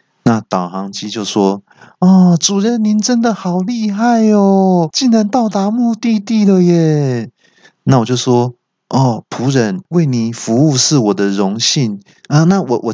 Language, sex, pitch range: Chinese, male, 125-195 Hz